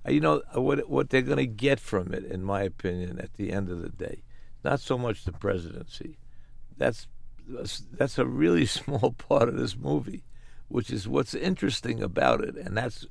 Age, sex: 60-79, male